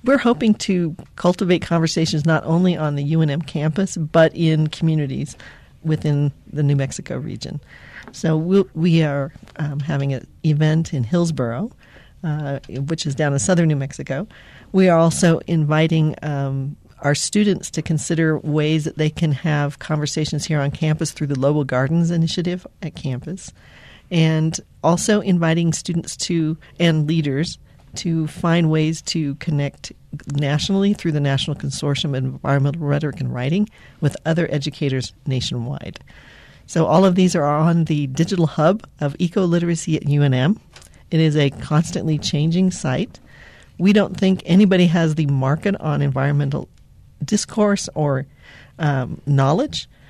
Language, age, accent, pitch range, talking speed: English, 40-59, American, 145-170 Hz, 145 wpm